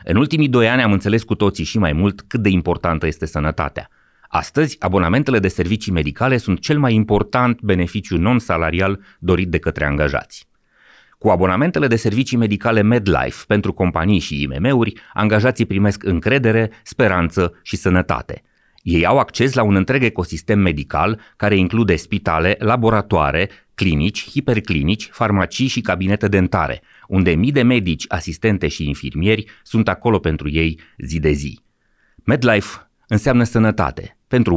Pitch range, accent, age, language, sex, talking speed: 85-115 Hz, native, 30-49, Romanian, male, 145 wpm